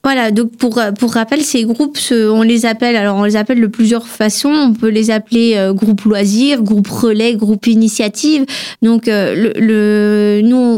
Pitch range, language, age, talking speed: 210-250 Hz, French, 20-39, 175 wpm